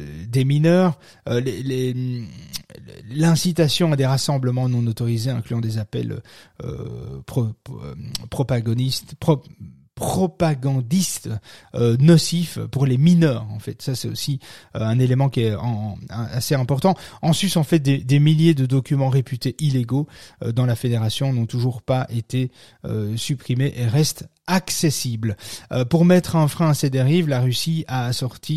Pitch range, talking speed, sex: 120-160 Hz, 155 wpm, male